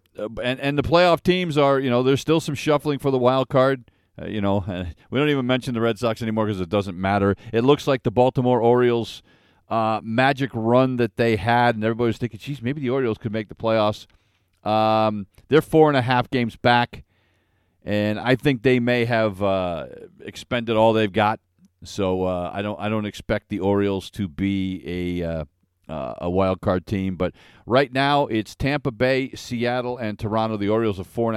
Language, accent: English, American